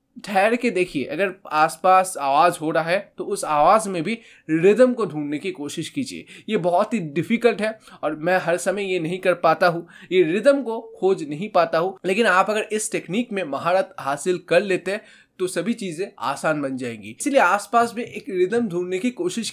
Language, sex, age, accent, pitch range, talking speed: Hindi, male, 20-39, native, 165-225 Hz, 205 wpm